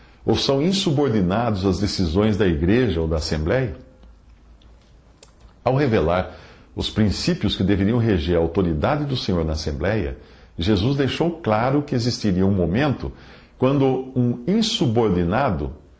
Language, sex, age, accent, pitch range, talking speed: English, male, 50-69, Brazilian, 85-125 Hz, 125 wpm